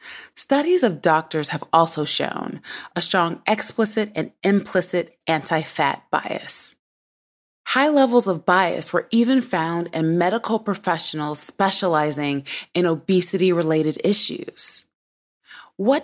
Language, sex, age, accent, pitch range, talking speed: English, female, 20-39, American, 165-220 Hz, 105 wpm